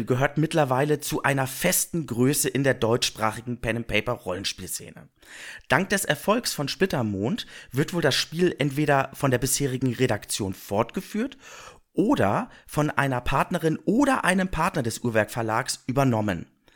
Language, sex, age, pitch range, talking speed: German, male, 40-59, 120-160 Hz, 135 wpm